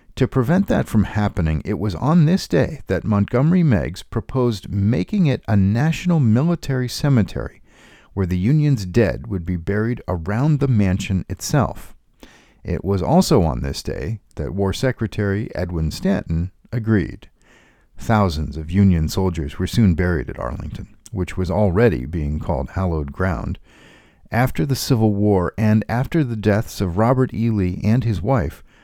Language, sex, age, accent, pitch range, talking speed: English, male, 50-69, American, 90-125 Hz, 155 wpm